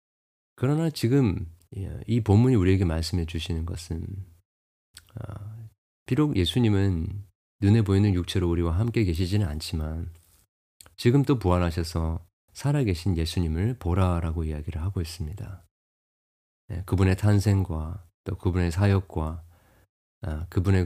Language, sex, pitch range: Korean, male, 85-110 Hz